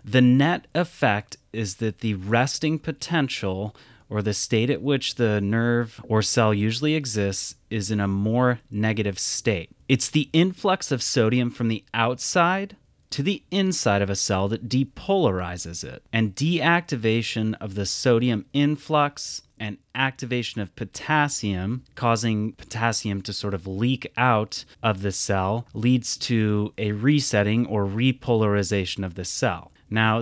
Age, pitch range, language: 30-49, 100-135 Hz, English